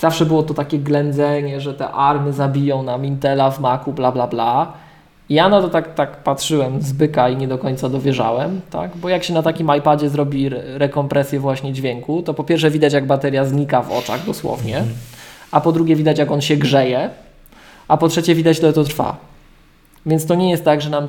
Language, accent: Polish, native